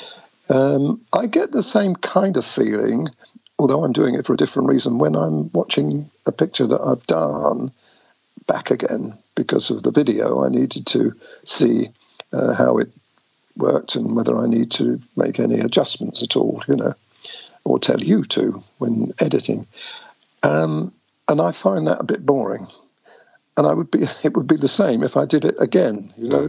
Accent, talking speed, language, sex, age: British, 180 wpm, English, male, 50-69